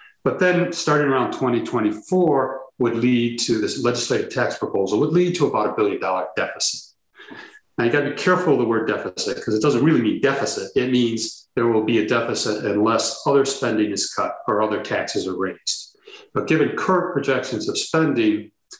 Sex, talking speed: male, 190 wpm